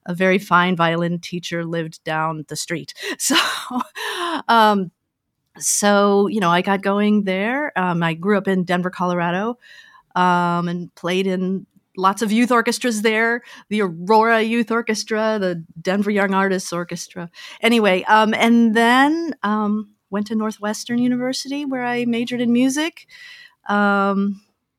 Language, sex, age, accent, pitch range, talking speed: English, female, 50-69, American, 170-220 Hz, 140 wpm